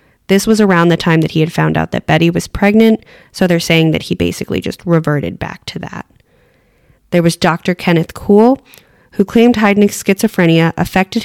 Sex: female